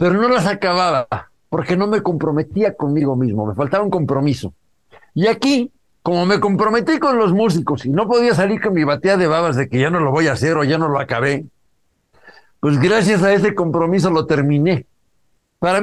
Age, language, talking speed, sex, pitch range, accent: 60-79, English, 195 wpm, male, 145-200 Hz, Mexican